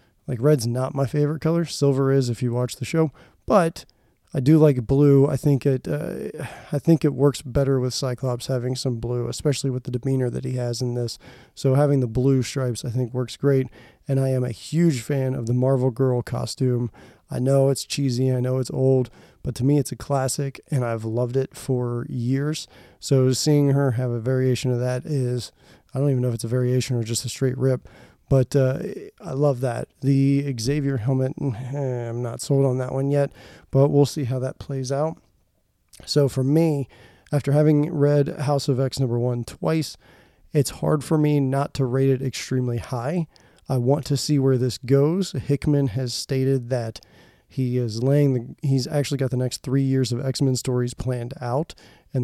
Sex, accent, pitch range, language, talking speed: male, American, 125-140 Hz, English, 200 wpm